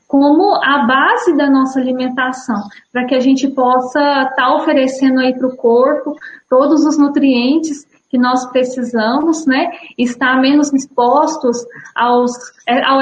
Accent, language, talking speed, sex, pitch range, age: Brazilian, Portuguese, 135 wpm, female, 240-280 Hz, 10-29